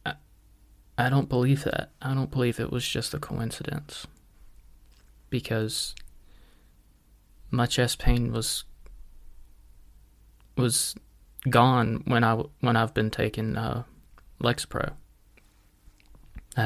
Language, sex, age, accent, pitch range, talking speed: English, male, 20-39, American, 100-125 Hz, 100 wpm